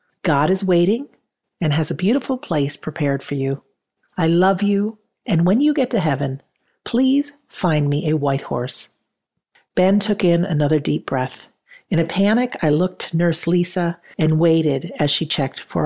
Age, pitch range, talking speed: 50-69, 150-200 Hz, 175 wpm